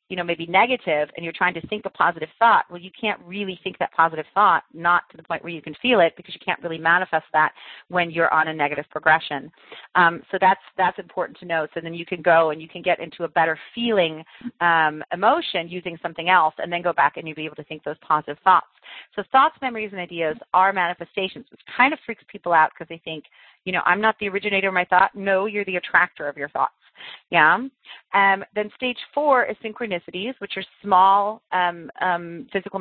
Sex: female